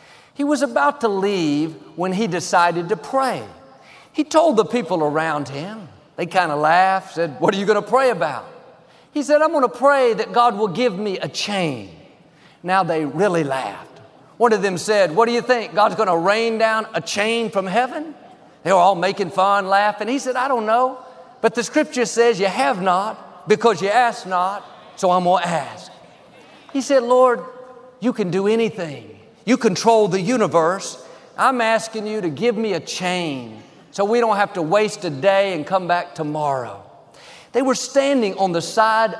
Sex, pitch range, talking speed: male, 175-245 Hz, 185 wpm